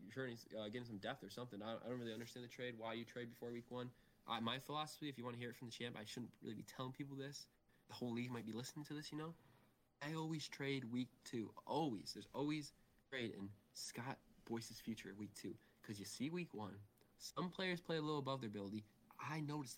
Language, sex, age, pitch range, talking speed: English, male, 20-39, 110-135 Hz, 245 wpm